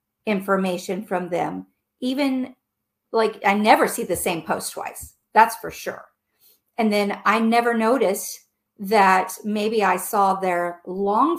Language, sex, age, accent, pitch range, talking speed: English, female, 50-69, American, 190-235 Hz, 135 wpm